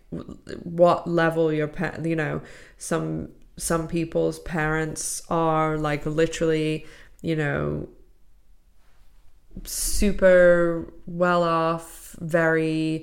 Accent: British